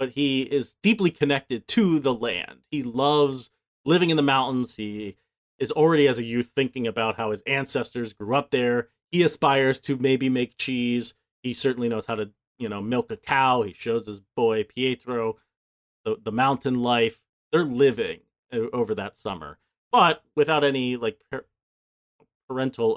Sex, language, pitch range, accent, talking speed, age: male, English, 110-140 Hz, American, 165 wpm, 30-49